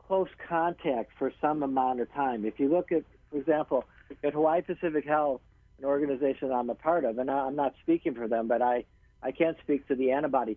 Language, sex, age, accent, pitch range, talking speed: English, male, 60-79, American, 120-150 Hz, 210 wpm